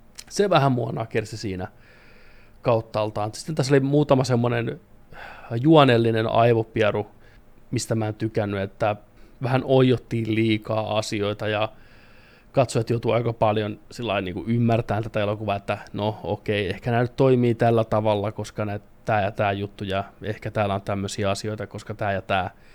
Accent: native